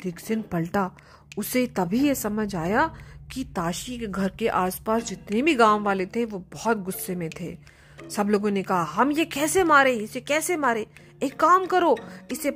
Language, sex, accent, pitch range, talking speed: Hindi, female, native, 205-290 Hz, 185 wpm